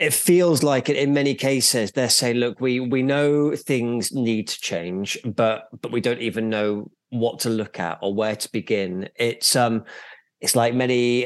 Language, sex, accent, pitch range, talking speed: English, male, British, 105-130 Hz, 185 wpm